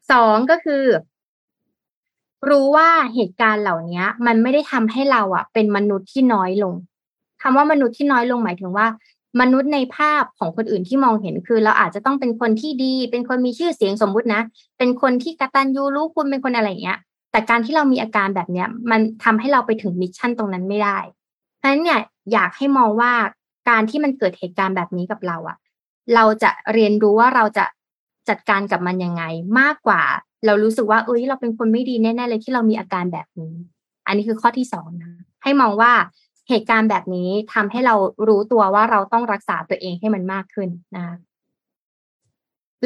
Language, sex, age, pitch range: Thai, female, 20-39, 195-250 Hz